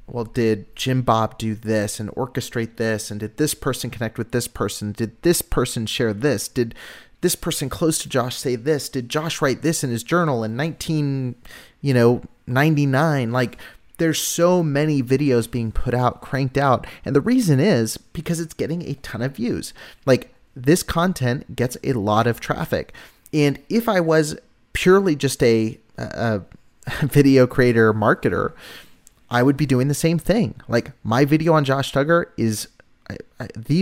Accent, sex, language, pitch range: American, male, English, 110-145 Hz